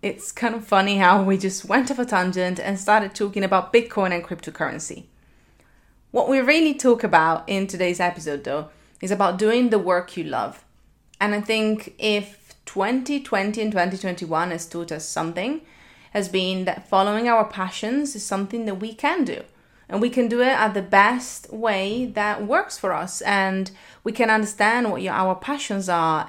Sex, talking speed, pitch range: female, 180 wpm, 180-235 Hz